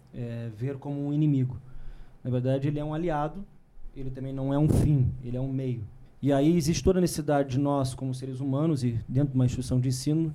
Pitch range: 125-155 Hz